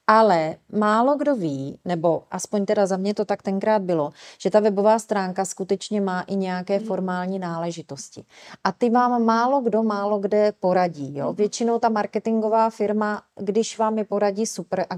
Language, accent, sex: Czech, native, female